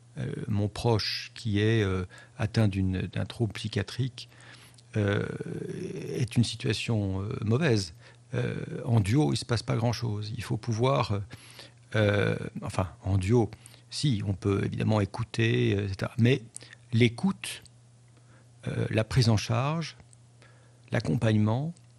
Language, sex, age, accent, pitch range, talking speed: French, male, 50-69, French, 110-125 Hz, 125 wpm